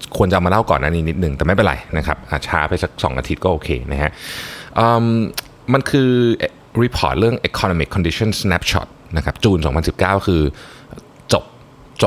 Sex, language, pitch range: male, Thai, 80-115 Hz